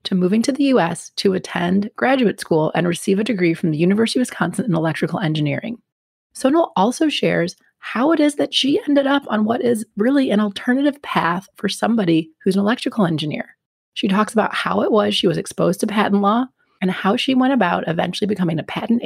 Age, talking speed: 30-49, 205 wpm